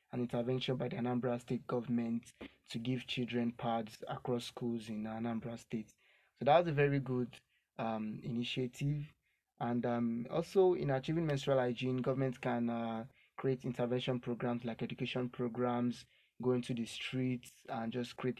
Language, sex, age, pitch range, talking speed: English, male, 20-39, 120-130 Hz, 155 wpm